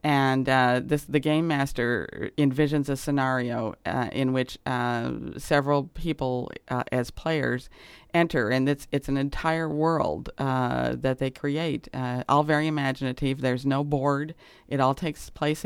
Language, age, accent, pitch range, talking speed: English, 50-69, American, 125-145 Hz, 155 wpm